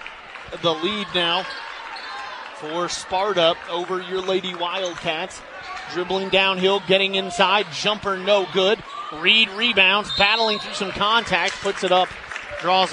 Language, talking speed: English, 125 wpm